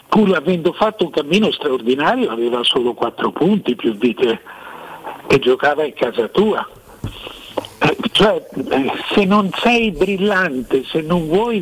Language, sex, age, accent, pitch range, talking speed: Italian, male, 60-79, native, 145-210 Hz, 140 wpm